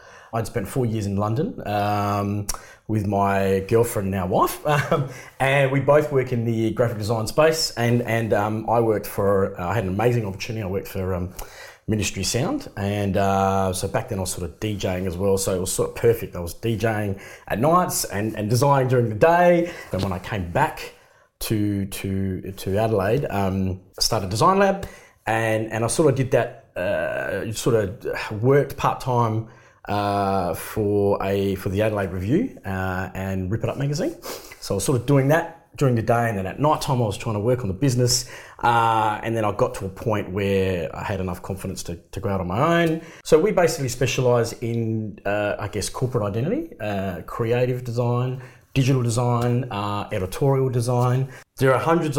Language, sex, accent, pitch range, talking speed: English, male, Australian, 100-130 Hz, 200 wpm